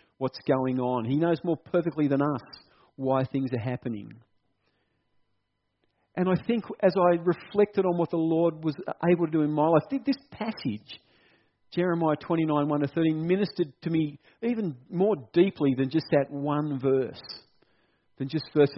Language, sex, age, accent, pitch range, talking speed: English, male, 50-69, Australian, 125-170 Hz, 165 wpm